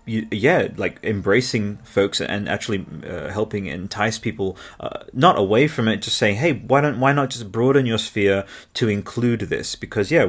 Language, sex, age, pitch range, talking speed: English, male, 30-49, 90-105 Hz, 185 wpm